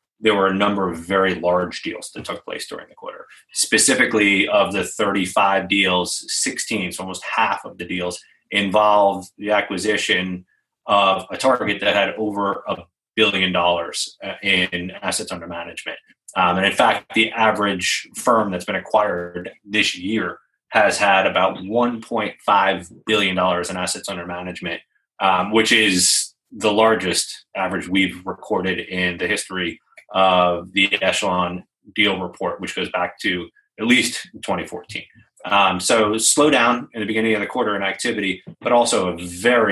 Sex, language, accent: male, English, American